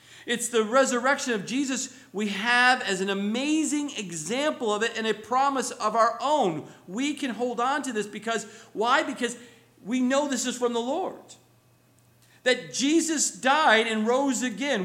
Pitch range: 190-255 Hz